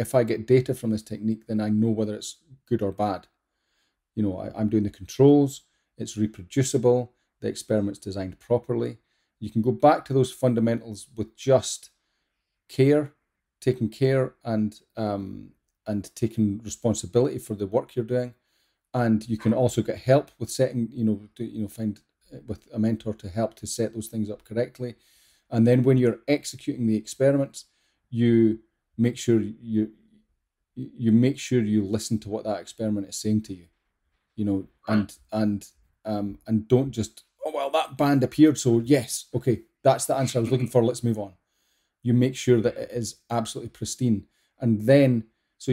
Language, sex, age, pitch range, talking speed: English, male, 40-59, 105-125 Hz, 180 wpm